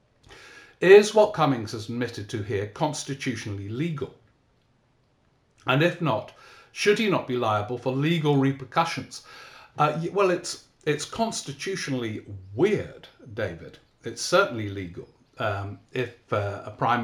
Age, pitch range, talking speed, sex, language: 50-69, 115-140 Hz, 125 wpm, male, English